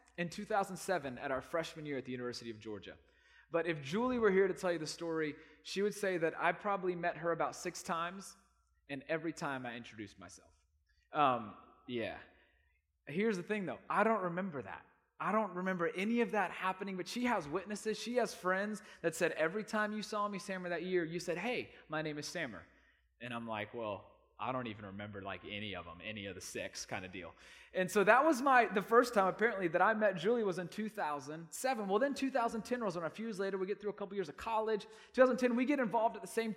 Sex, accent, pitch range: male, American, 155-215 Hz